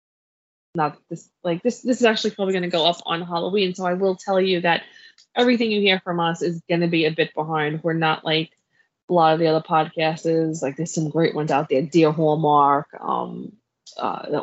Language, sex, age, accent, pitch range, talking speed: English, female, 20-39, American, 155-195 Hz, 215 wpm